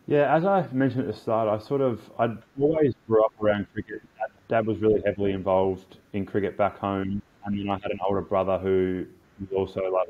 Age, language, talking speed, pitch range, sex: 20-39, English, 215 wpm, 95-105 Hz, male